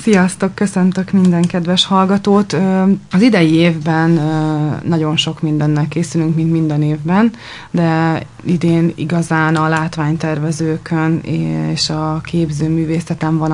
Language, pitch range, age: Hungarian, 155-170 Hz, 20-39